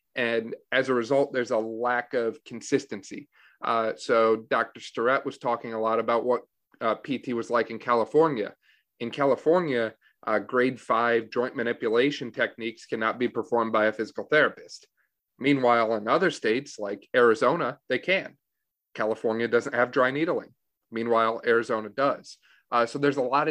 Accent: American